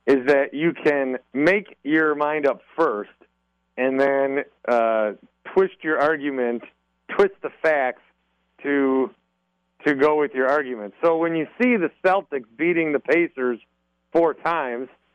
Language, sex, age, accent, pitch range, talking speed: English, male, 40-59, American, 115-150 Hz, 140 wpm